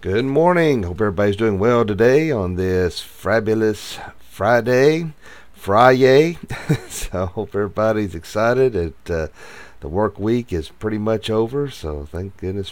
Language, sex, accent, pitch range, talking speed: English, male, American, 85-110 Hz, 135 wpm